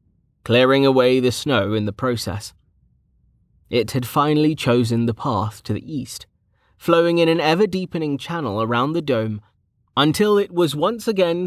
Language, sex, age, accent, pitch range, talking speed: English, male, 30-49, British, 105-135 Hz, 150 wpm